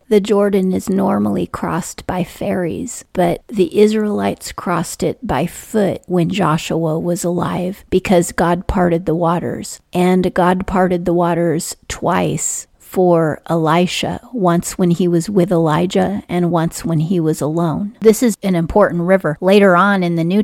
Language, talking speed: English, 155 wpm